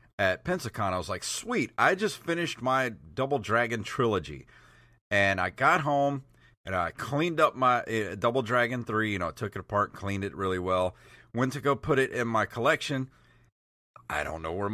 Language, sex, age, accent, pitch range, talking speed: English, male, 40-59, American, 95-130 Hz, 190 wpm